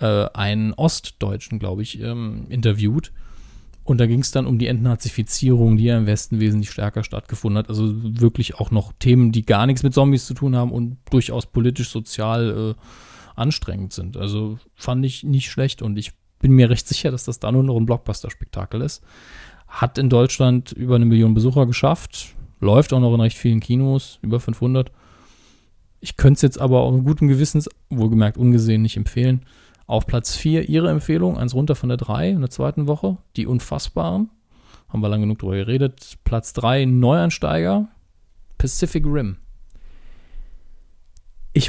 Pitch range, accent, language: 110-135 Hz, German, German